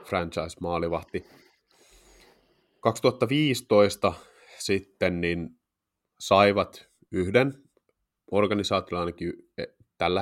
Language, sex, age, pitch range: Finnish, male, 30-49, 85-100 Hz